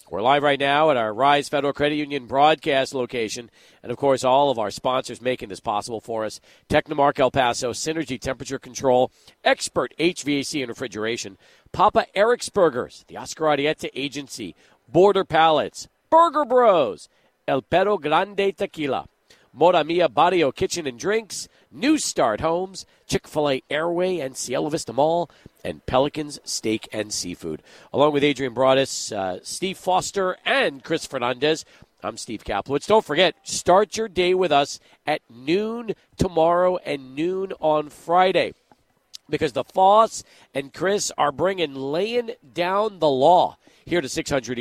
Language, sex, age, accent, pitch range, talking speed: English, male, 40-59, American, 130-175 Hz, 150 wpm